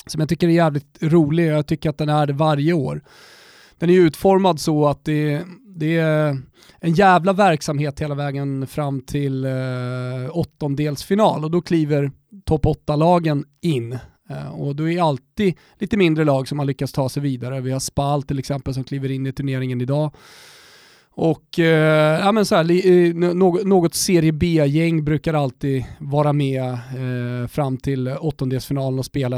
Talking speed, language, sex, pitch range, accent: 180 wpm, Swedish, male, 140-175 Hz, native